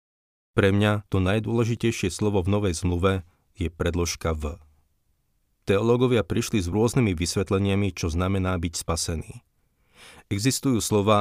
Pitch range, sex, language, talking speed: 85-100 Hz, male, Slovak, 120 wpm